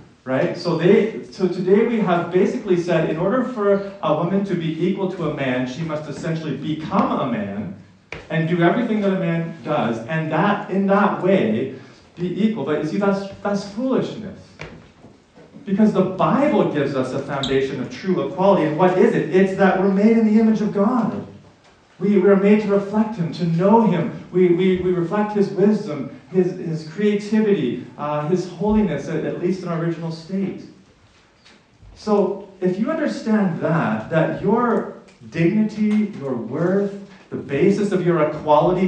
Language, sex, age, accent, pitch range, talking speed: English, male, 40-59, American, 155-200 Hz, 175 wpm